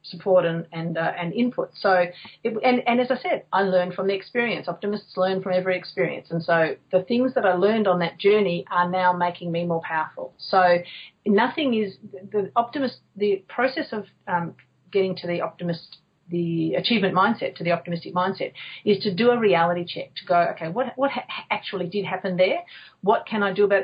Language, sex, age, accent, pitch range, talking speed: English, female, 40-59, Australian, 180-220 Hz, 205 wpm